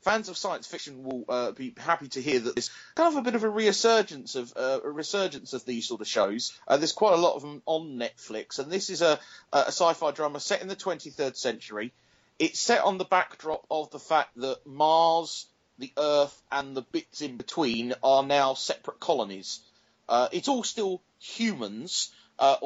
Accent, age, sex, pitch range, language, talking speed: British, 30-49, male, 130-175 Hz, English, 200 wpm